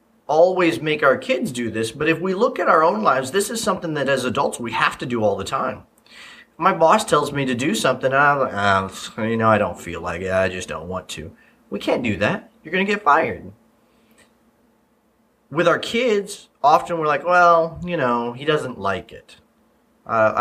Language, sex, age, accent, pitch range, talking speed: English, male, 30-49, American, 110-175 Hz, 210 wpm